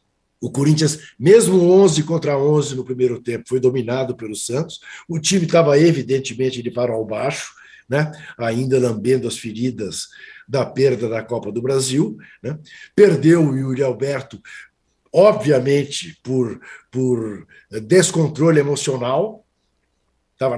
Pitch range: 120-160 Hz